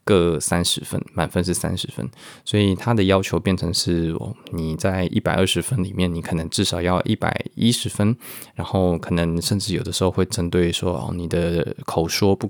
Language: Chinese